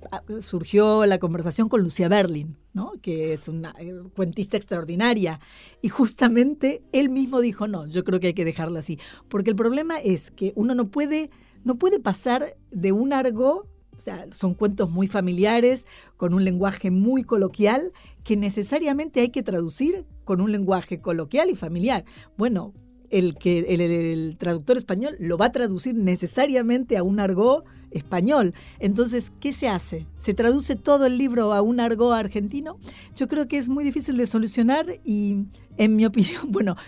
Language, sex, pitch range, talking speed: Spanish, female, 180-245 Hz, 170 wpm